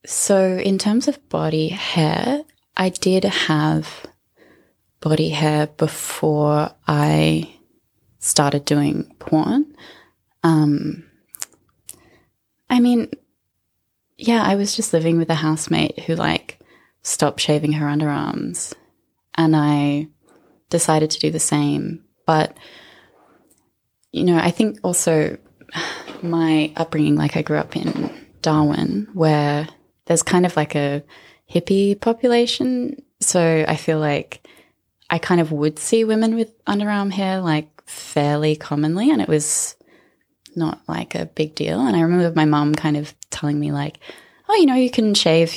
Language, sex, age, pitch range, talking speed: English, female, 20-39, 150-190 Hz, 135 wpm